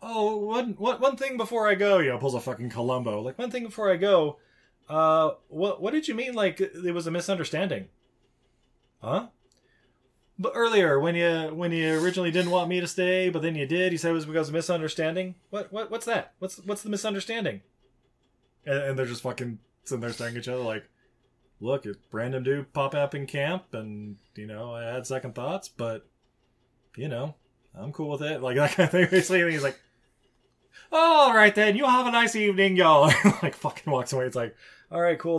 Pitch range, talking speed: 125-195 Hz, 205 wpm